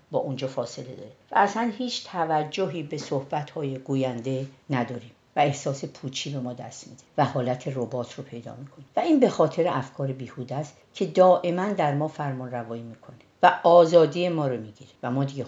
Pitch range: 125-175 Hz